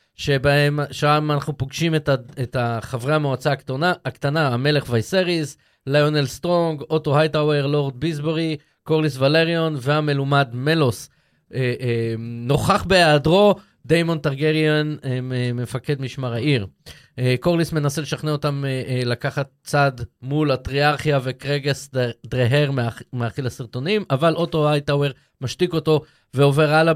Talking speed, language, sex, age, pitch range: 120 wpm, Hebrew, male, 20-39, 125-155 Hz